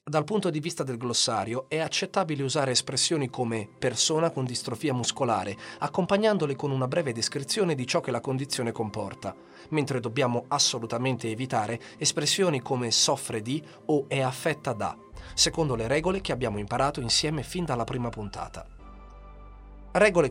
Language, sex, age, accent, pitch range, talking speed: Italian, male, 40-59, native, 115-150 Hz, 150 wpm